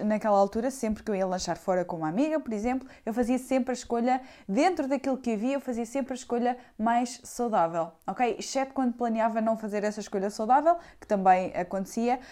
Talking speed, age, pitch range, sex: 205 wpm, 20-39, 200-245 Hz, female